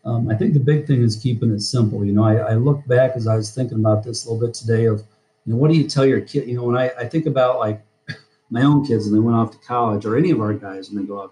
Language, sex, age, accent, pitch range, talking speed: English, male, 40-59, American, 105-120 Hz, 325 wpm